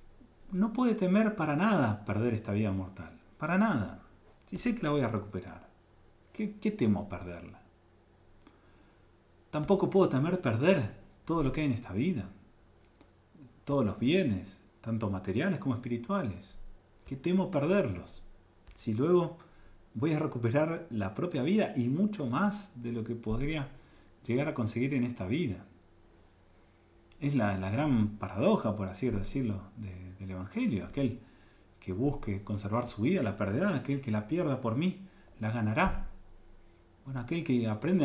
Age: 40-59